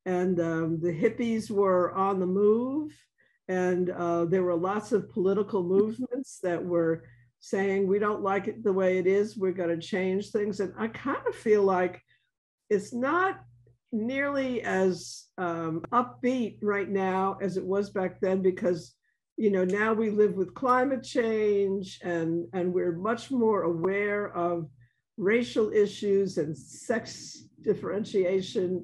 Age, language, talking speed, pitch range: 50-69, English, 150 wpm, 185-225 Hz